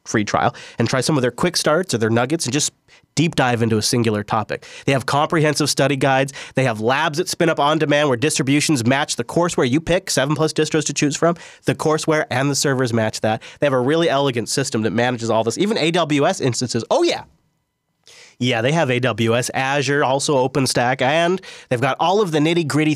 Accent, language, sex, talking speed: American, English, male, 215 wpm